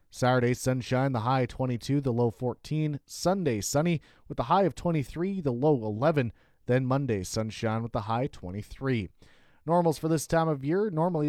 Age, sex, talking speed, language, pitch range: 30-49, male, 170 wpm, English, 120-155 Hz